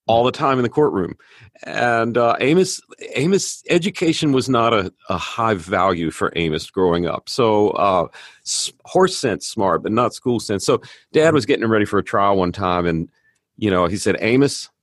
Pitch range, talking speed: 95-130 Hz, 190 wpm